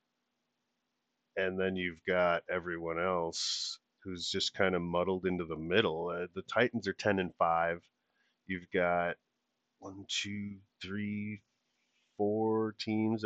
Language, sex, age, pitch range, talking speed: English, male, 40-59, 90-110 Hz, 125 wpm